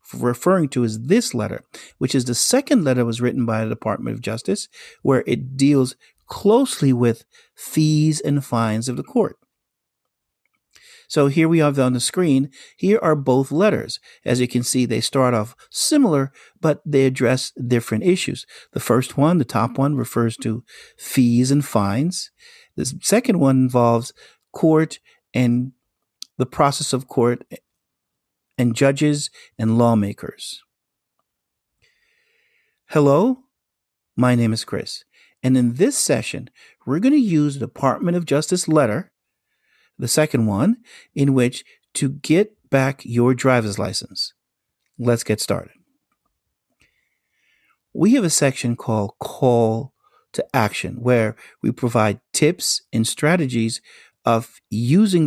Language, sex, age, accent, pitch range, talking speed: English, male, 50-69, American, 120-155 Hz, 135 wpm